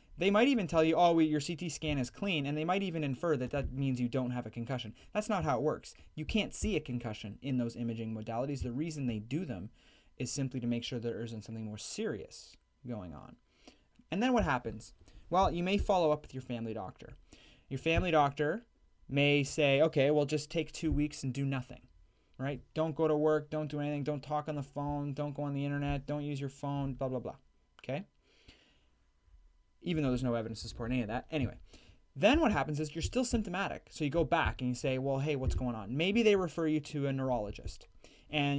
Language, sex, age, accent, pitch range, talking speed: English, male, 20-39, American, 125-155 Hz, 230 wpm